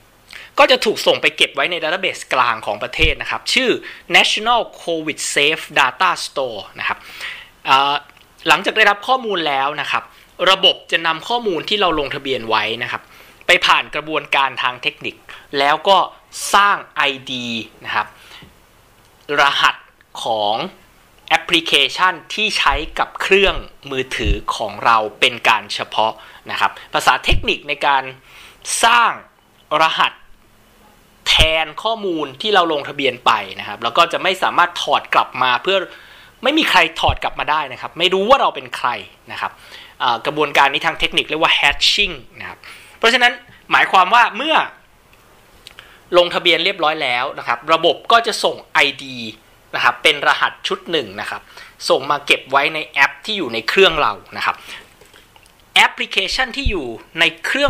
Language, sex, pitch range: Thai, male, 130-190 Hz